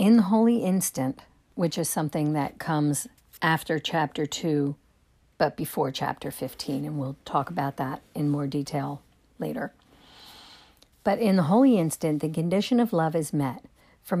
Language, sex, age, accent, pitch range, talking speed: English, female, 50-69, American, 150-200 Hz, 155 wpm